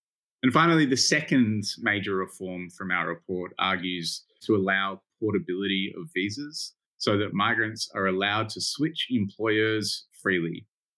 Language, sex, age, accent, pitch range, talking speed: English, male, 20-39, Australian, 95-120 Hz, 130 wpm